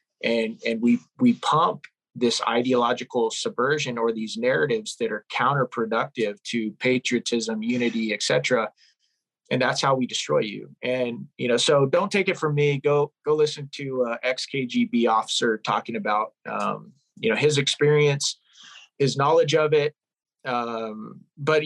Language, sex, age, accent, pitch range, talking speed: English, male, 30-49, American, 125-175 Hz, 150 wpm